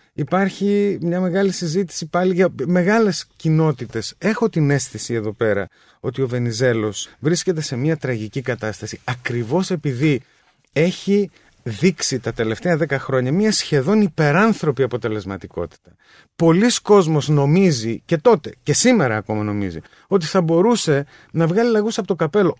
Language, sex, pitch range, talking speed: Greek, male, 125-170 Hz, 135 wpm